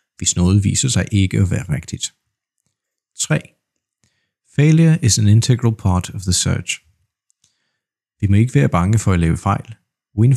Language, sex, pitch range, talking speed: Danish, male, 95-125 Hz, 155 wpm